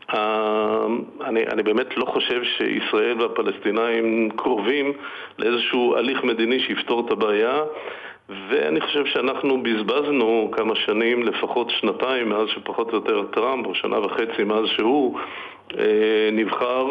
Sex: male